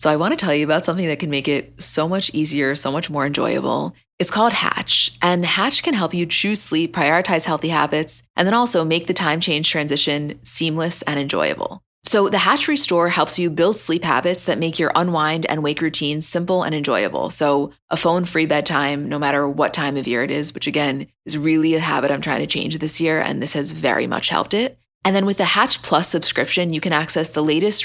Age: 20-39